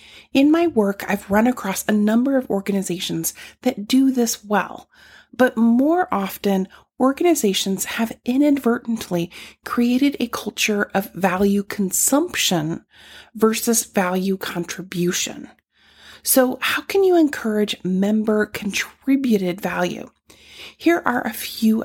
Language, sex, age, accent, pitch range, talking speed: English, female, 30-49, American, 195-260 Hz, 115 wpm